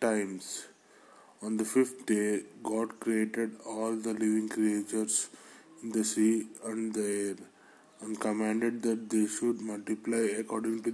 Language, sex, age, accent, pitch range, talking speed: English, male, 20-39, Indian, 105-115 Hz, 130 wpm